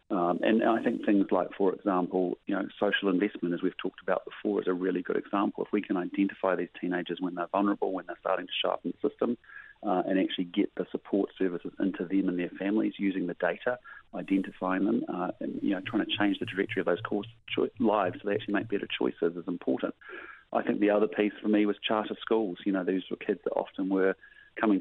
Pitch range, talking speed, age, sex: 95-105 Hz, 230 wpm, 40-59, male